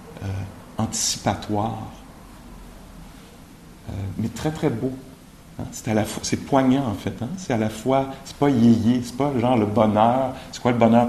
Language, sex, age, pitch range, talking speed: English, male, 50-69, 105-125 Hz, 180 wpm